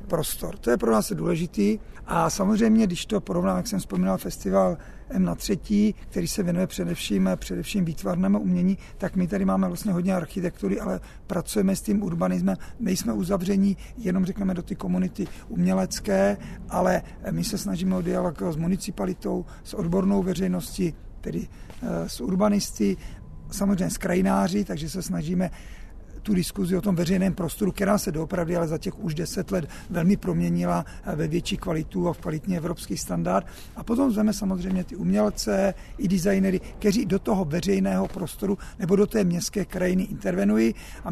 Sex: male